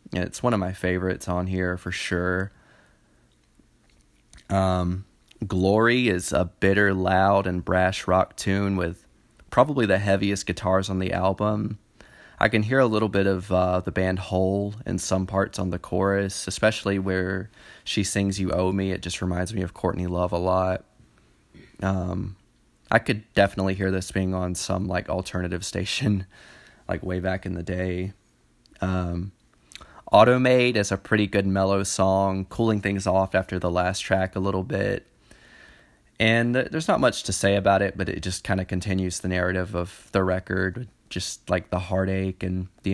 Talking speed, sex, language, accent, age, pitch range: 170 wpm, male, English, American, 20-39, 90-100 Hz